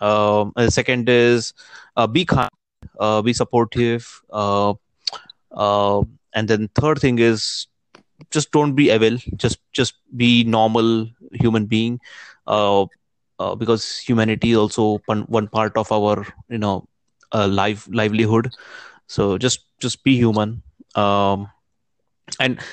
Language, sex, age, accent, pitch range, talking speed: Marathi, male, 30-49, native, 110-130 Hz, 135 wpm